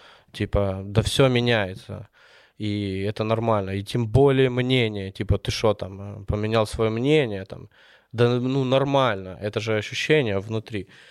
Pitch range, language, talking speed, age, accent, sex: 105-130 Hz, Ukrainian, 140 wpm, 20-39, native, male